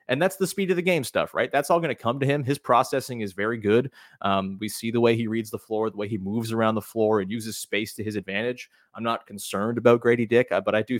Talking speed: 285 wpm